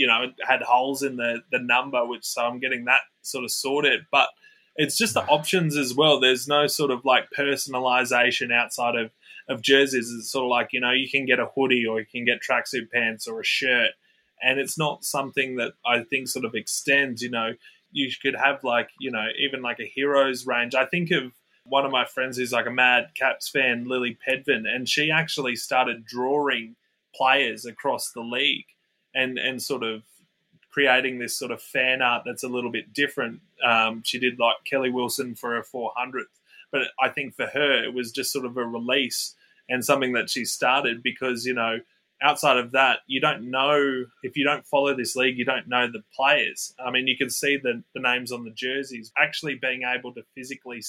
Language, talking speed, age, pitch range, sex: English, 210 wpm, 20-39, 120-140 Hz, male